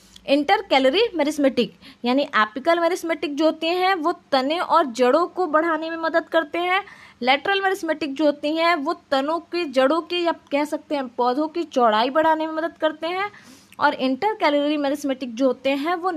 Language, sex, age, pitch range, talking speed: Hindi, female, 20-39, 260-345 Hz, 180 wpm